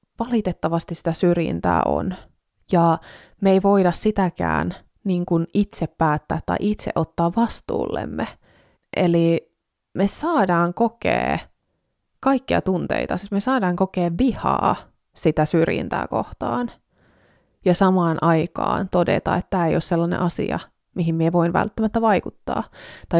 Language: Finnish